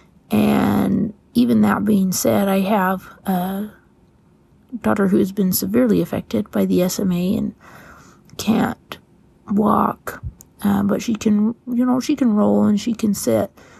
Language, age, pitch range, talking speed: English, 30-49, 190-220 Hz, 145 wpm